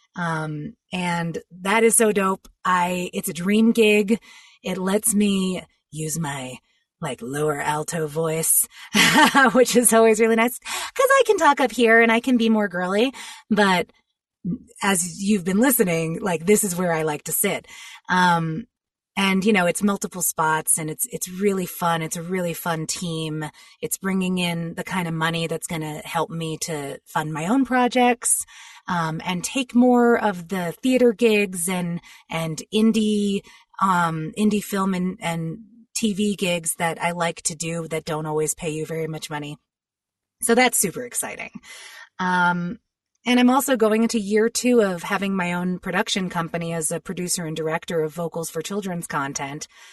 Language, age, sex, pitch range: English, 30-49, female, 165-225 Hz